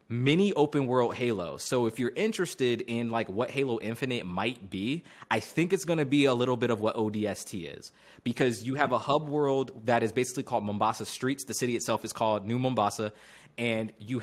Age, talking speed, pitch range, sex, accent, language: 20-39, 205 wpm, 105-135 Hz, male, American, English